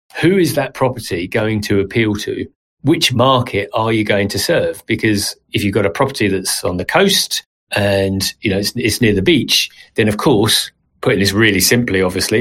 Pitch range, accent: 100-125 Hz, British